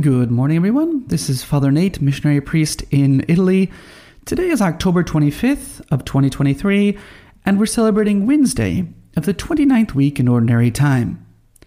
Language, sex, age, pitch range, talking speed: English, male, 30-49, 140-215 Hz, 145 wpm